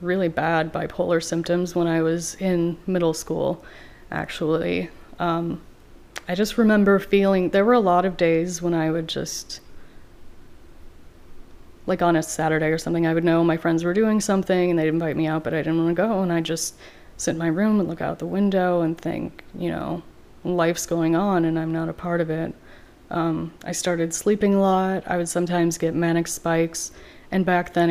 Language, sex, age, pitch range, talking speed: English, female, 30-49, 160-180 Hz, 200 wpm